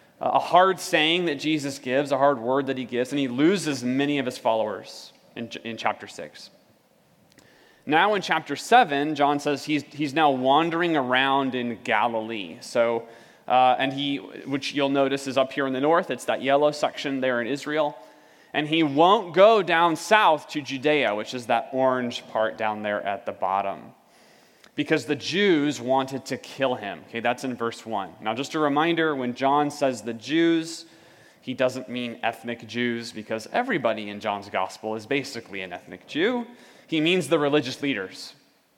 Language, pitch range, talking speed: English, 120-150 Hz, 180 wpm